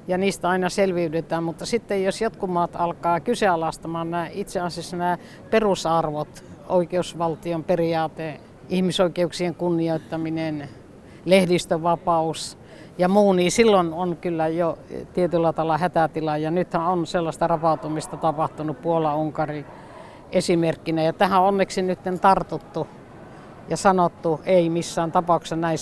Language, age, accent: Finnish, 60-79, native